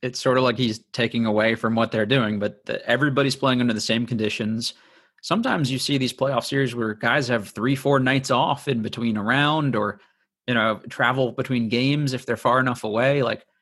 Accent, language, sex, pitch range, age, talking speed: American, English, male, 110-130 Hz, 30-49, 205 wpm